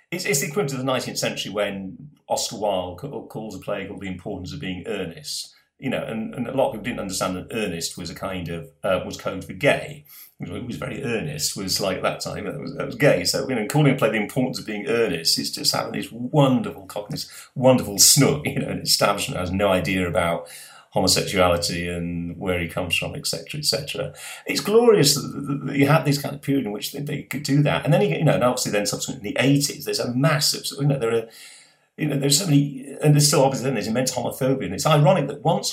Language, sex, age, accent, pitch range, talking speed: English, male, 40-59, British, 95-140 Hz, 245 wpm